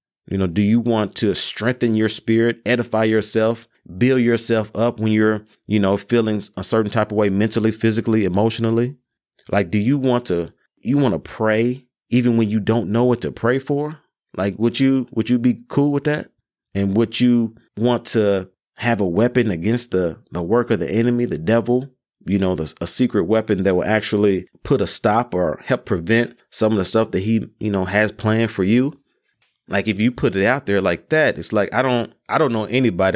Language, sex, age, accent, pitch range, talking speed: English, male, 30-49, American, 95-115 Hz, 210 wpm